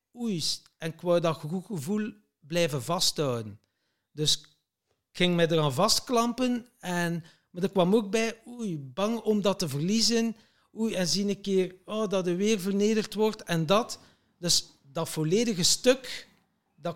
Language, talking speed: Dutch, 160 wpm